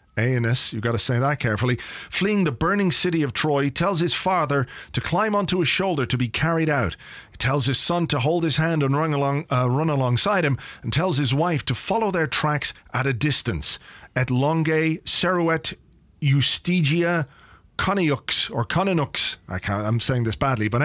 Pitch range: 130-170 Hz